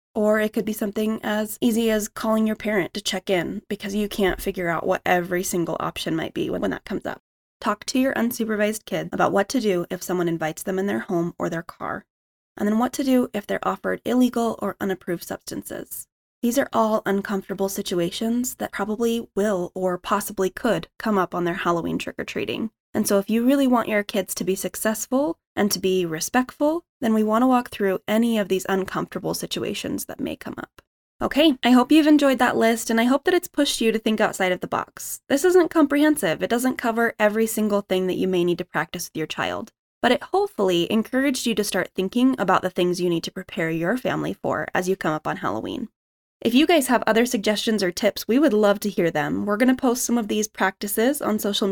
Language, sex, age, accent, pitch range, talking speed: English, female, 20-39, American, 190-240 Hz, 225 wpm